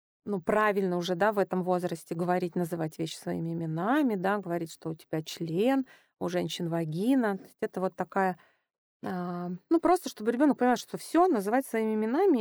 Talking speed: 170 wpm